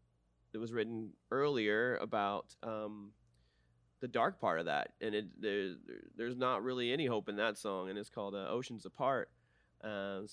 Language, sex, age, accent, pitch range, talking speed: English, male, 20-39, American, 100-120 Hz, 170 wpm